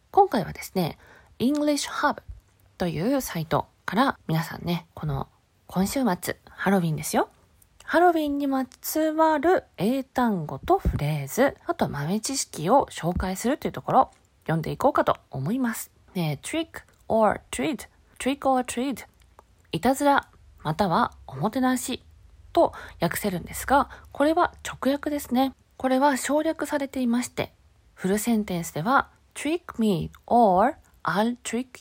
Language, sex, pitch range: Japanese, female, 180-290 Hz